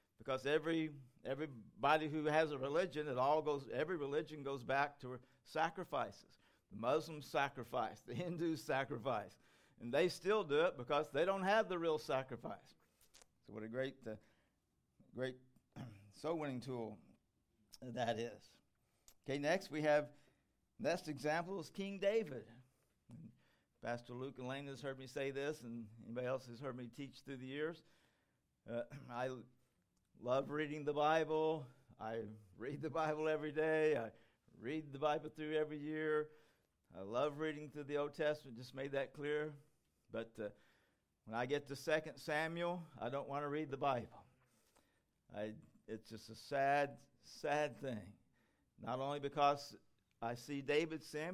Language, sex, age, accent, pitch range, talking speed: English, male, 50-69, American, 120-155 Hz, 155 wpm